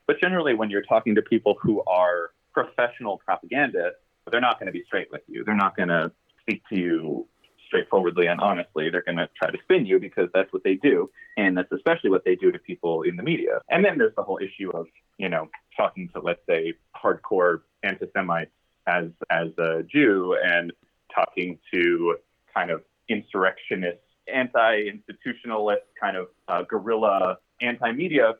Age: 30-49